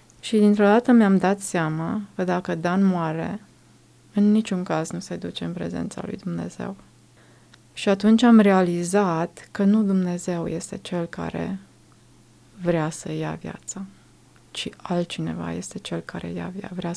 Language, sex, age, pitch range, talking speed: Romanian, female, 20-39, 170-195 Hz, 145 wpm